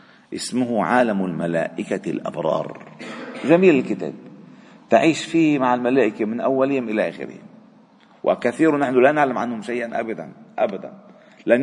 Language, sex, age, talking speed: Arabic, male, 50-69, 120 wpm